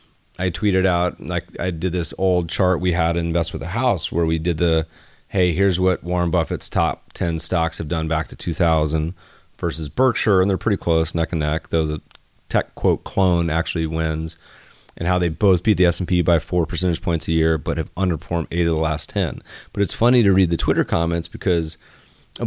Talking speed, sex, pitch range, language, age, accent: 215 wpm, male, 85-105 Hz, English, 30-49, American